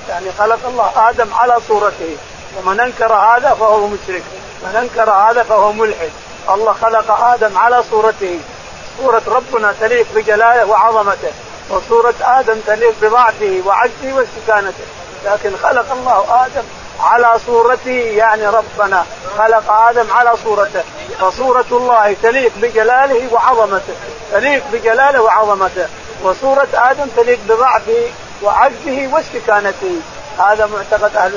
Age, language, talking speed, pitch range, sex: 50-69, Arabic, 115 wpm, 205-240 Hz, male